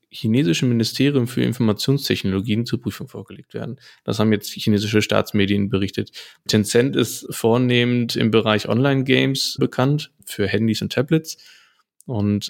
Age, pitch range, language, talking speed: 20-39, 100-120 Hz, German, 130 wpm